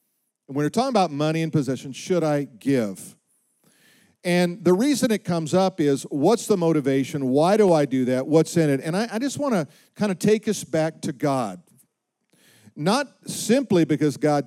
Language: English